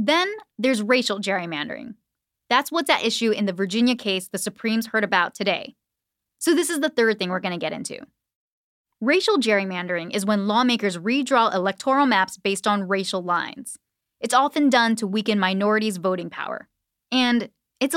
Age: 10-29